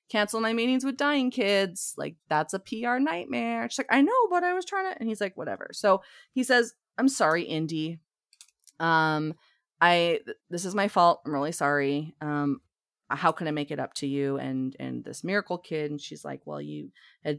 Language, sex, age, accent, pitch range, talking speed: English, female, 30-49, American, 145-220 Hz, 205 wpm